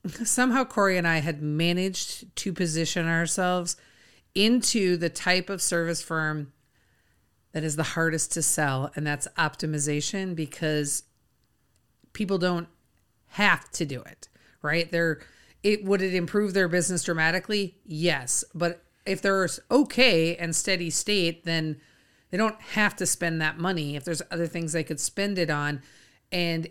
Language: English